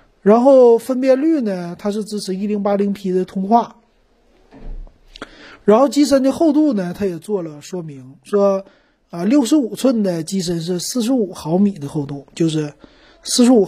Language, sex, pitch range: Chinese, male, 165-225 Hz